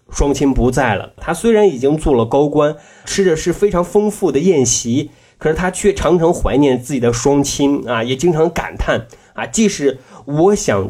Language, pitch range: Chinese, 110-160 Hz